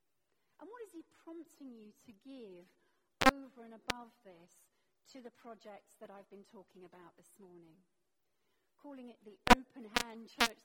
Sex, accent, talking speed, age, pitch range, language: female, British, 150 wpm, 40-59, 195-255 Hz, English